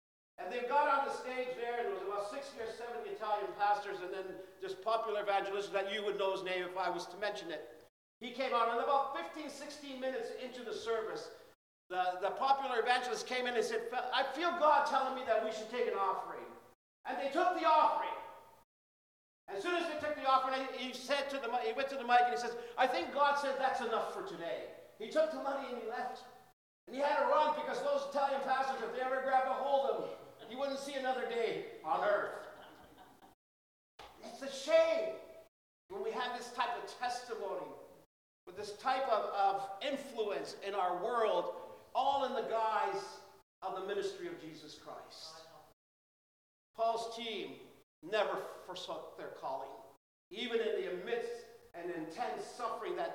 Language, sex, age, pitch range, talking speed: English, male, 50-69, 205-285 Hz, 190 wpm